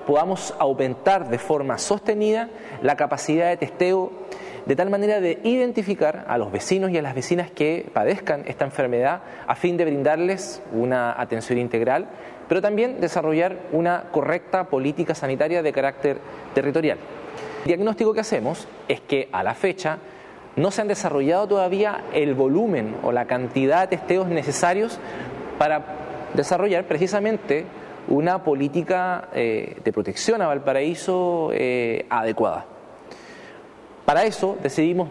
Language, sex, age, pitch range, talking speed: Spanish, male, 20-39, 145-195 Hz, 135 wpm